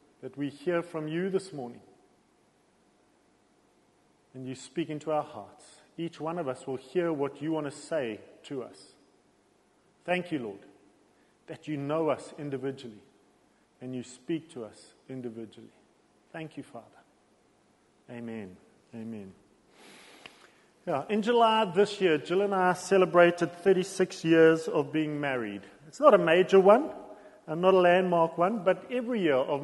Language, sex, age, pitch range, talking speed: English, male, 40-59, 150-185 Hz, 145 wpm